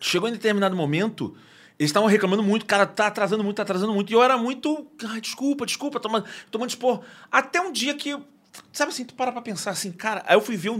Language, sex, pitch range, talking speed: Portuguese, male, 150-225 Hz, 235 wpm